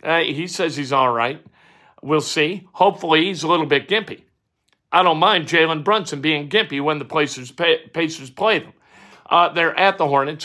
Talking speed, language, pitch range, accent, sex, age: 185 wpm, English, 140-170 Hz, American, male, 50-69